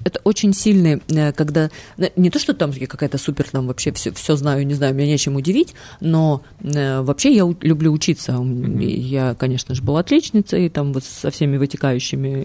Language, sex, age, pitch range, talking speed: Russian, female, 30-49, 140-175 Hz, 180 wpm